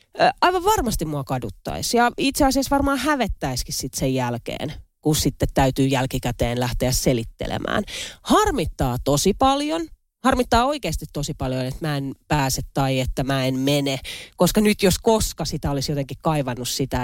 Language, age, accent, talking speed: Finnish, 30-49, native, 150 wpm